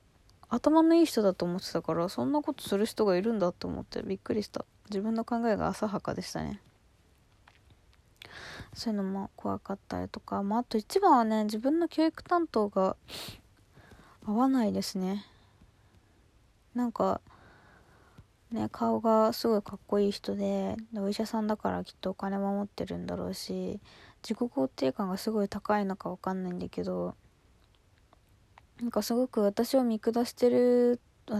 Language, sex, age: Japanese, female, 20-39